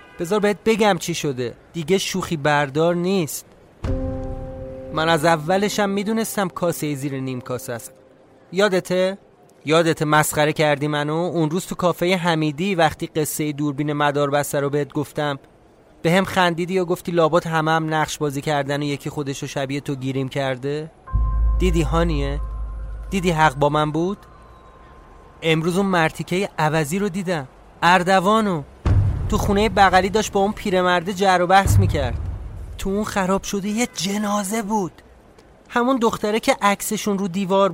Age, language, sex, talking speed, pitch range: 30-49, Persian, male, 145 wpm, 145-195 Hz